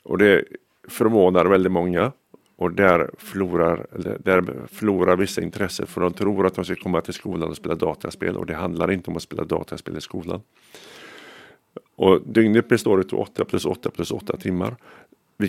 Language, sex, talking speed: Finnish, male, 180 wpm